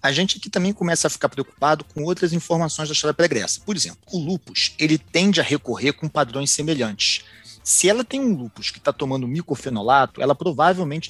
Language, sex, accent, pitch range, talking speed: Portuguese, male, Brazilian, 130-175 Hz, 200 wpm